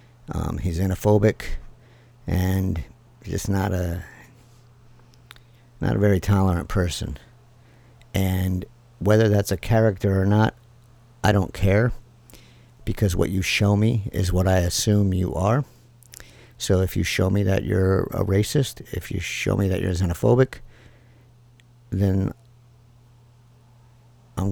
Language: English